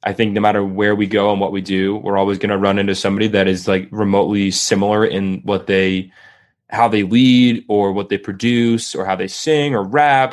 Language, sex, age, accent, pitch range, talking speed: English, male, 20-39, American, 95-105 Hz, 225 wpm